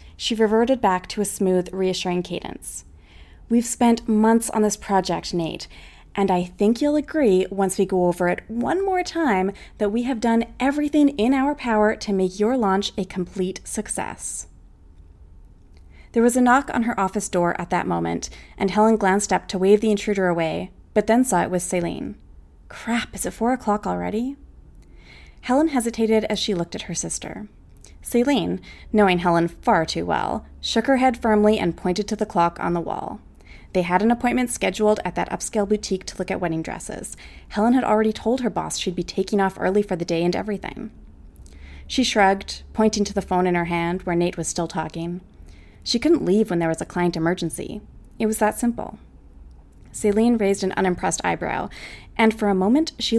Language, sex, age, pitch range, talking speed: English, female, 20-39, 170-225 Hz, 190 wpm